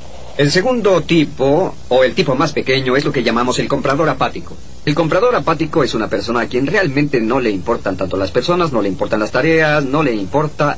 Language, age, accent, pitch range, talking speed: Spanish, 40-59, Mexican, 120-160 Hz, 210 wpm